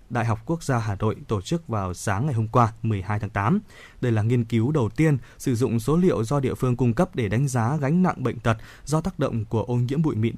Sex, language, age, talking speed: male, Vietnamese, 20-39, 265 wpm